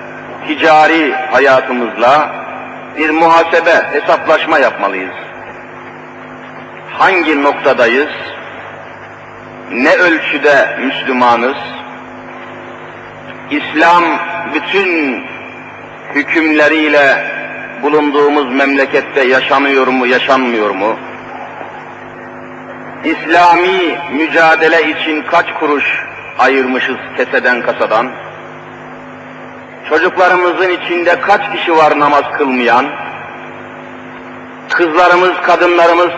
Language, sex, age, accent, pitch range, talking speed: Turkish, male, 50-69, native, 140-170 Hz, 60 wpm